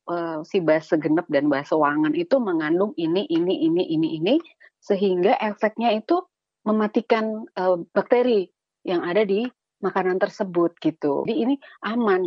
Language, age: Indonesian, 30-49